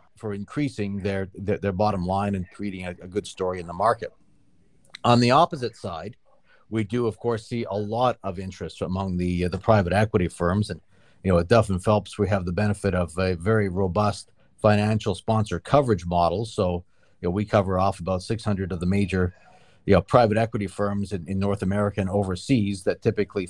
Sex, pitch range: male, 95-110 Hz